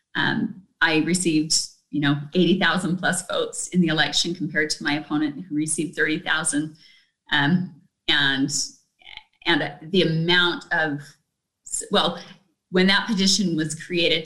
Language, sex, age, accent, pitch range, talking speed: English, female, 30-49, American, 160-195 Hz, 125 wpm